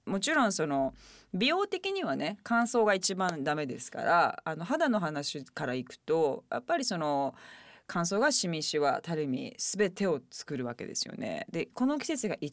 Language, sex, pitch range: Japanese, female, 150-250 Hz